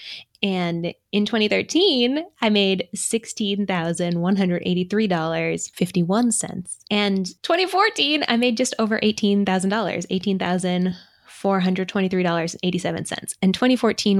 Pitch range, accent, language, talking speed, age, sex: 175-210 Hz, American, English, 70 wpm, 10-29, female